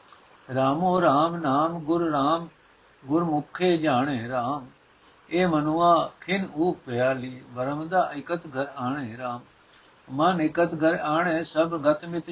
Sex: male